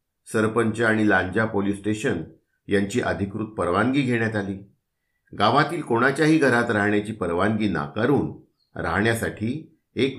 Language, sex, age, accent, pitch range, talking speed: Marathi, male, 50-69, native, 100-130 Hz, 105 wpm